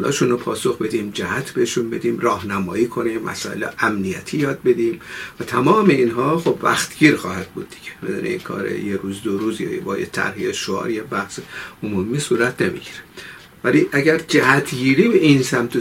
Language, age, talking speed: Persian, 50-69, 170 wpm